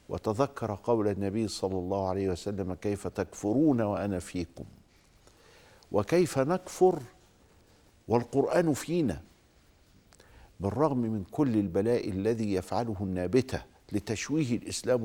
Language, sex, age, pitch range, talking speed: Arabic, male, 50-69, 95-120 Hz, 95 wpm